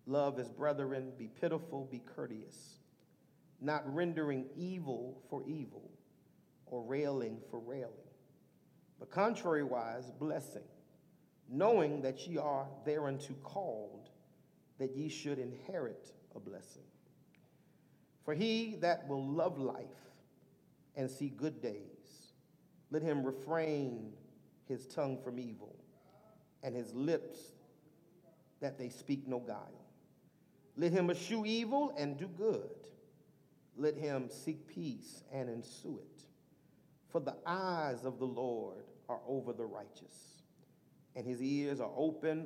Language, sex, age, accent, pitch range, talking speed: English, male, 50-69, American, 130-160 Hz, 120 wpm